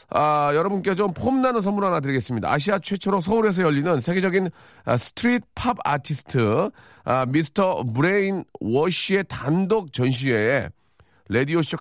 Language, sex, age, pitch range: Korean, male, 40-59, 115-155 Hz